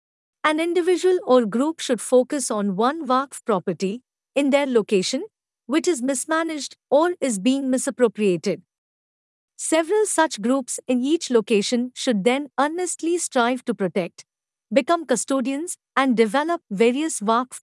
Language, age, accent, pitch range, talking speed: English, 50-69, Indian, 220-290 Hz, 130 wpm